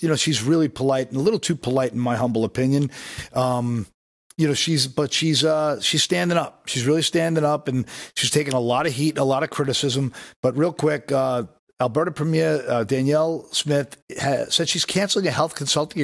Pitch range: 125-155 Hz